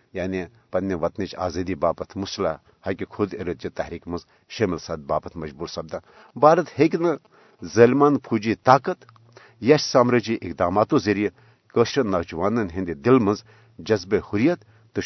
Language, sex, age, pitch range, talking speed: Urdu, male, 60-79, 95-125 Hz, 130 wpm